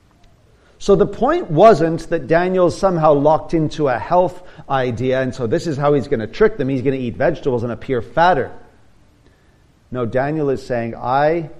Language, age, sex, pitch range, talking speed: English, 40-59, male, 110-175 Hz, 180 wpm